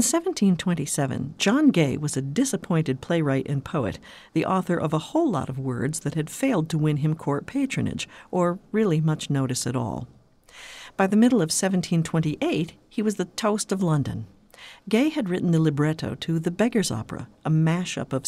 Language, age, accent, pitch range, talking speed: English, 50-69, American, 145-195 Hz, 180 wpm